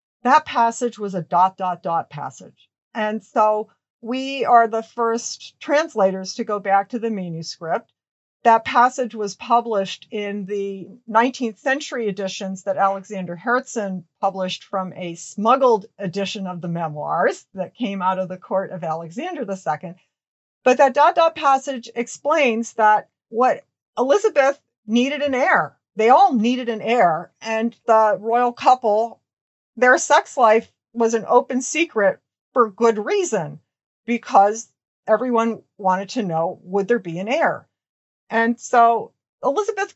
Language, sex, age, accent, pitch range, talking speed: English, female, 50-69, American, 200-250 Hz, 140 wpm